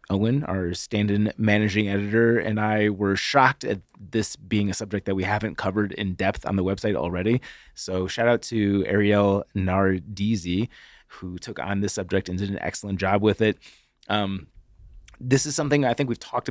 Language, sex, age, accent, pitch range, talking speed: English, male, 30-49, American, 95-120 Hz, 185 wpm